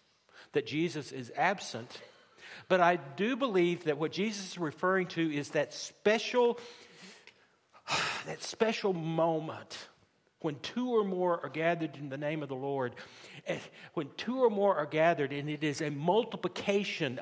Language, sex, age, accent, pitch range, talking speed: English, male, 60-79, American, 145-195 Hz, 150 wpm